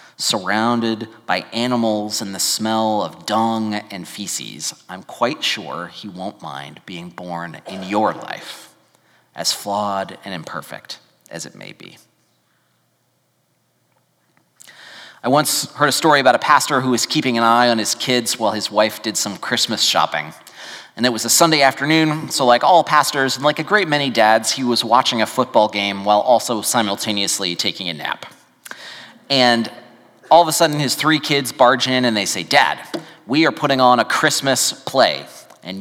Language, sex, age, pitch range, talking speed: English, male, 30-49, 105-145 Hz, 170 wpm